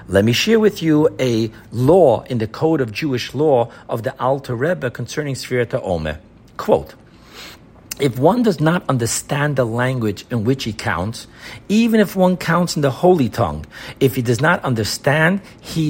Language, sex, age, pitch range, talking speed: English, male, 50-69, 120-165 Hz, 175 wpm